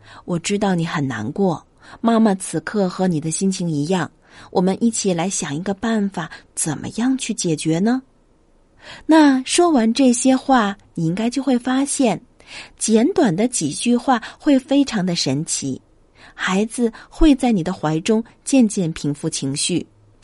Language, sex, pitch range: Chinese, female, 165-235 Hz